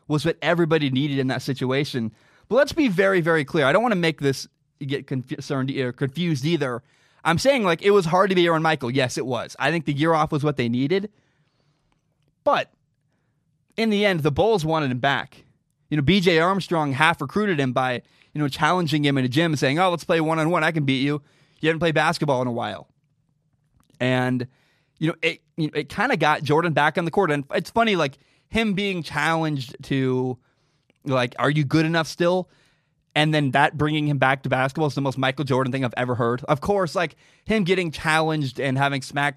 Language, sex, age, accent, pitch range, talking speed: English, male, 20-39, American, 135-165 Hz, 215 wpm